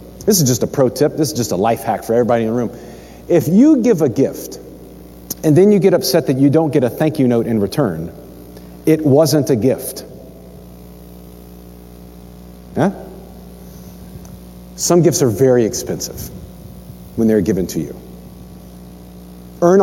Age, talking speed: 40-59, 155 wpm